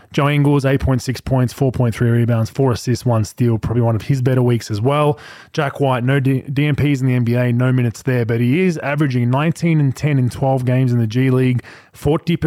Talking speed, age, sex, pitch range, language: 200 wpm, 20-39, male, 115-140 Hz, English